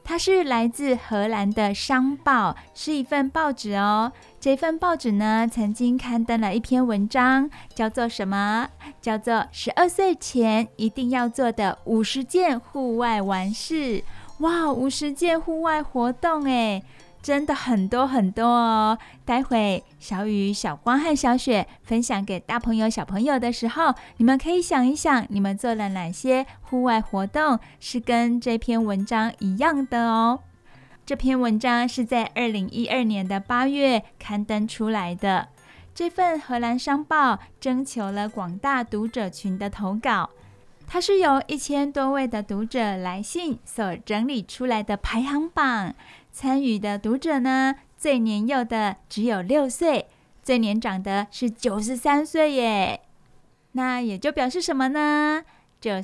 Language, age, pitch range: Chinese, 20-39, 215-275 Hz